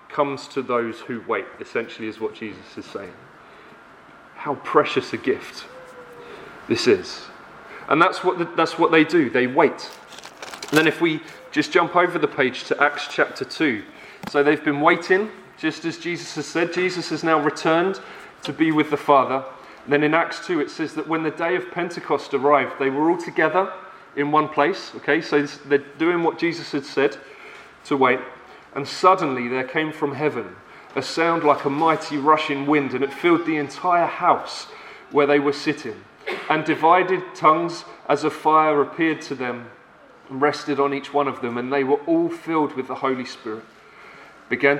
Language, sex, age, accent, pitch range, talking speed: English, male, 30-49, British, 140-165 Hz, 180 wpm